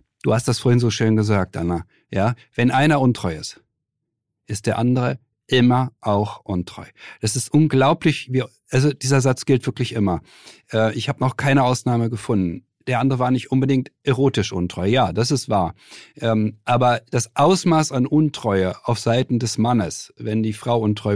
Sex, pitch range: male, 110-145 Hz